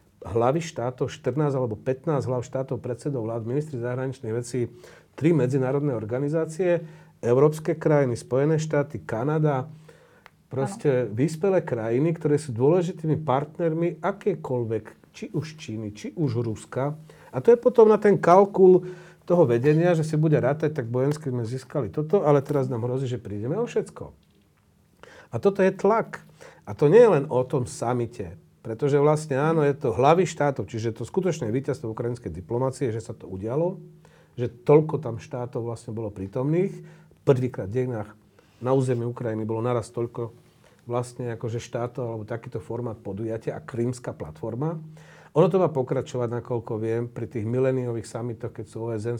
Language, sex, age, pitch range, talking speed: Slovak, male, 40-59, 115-155 Hz, 155 wpm